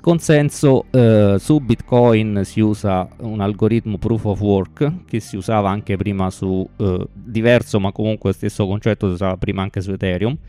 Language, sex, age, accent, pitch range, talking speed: Italian, male, 20-39, native, 100-120 Hz, 165 wpm